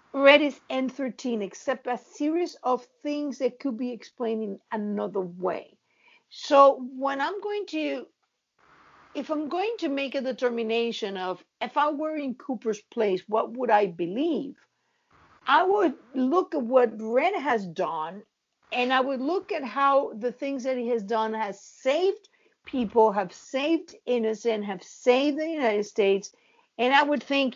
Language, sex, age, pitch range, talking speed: English, female, 50-69, 220-295 Hz, 160 wpm